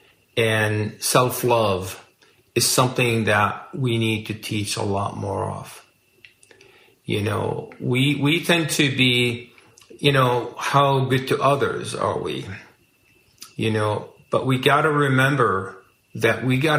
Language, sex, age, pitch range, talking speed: English, male, 50-69, 110-135 Hz, 135 wpm